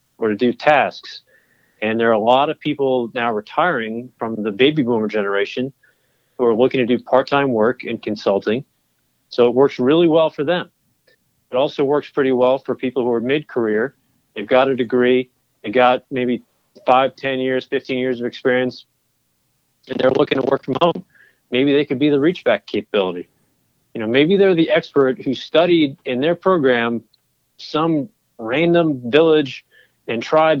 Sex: male